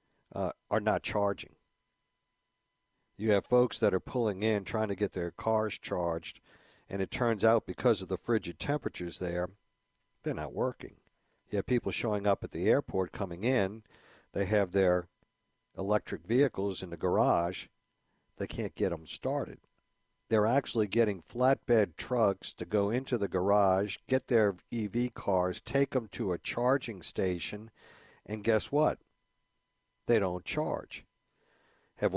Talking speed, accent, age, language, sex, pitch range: 150 wpm, American, 60-79, English, male, 100-125 Hz